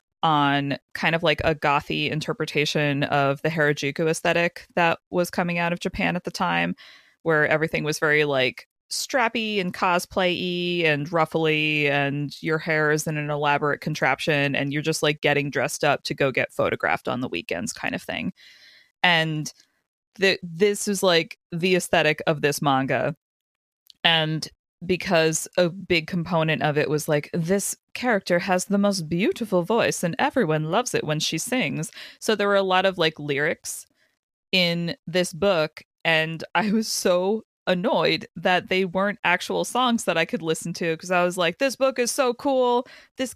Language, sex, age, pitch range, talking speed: English, female, 20-39, 155-210 Hz, 170 wpm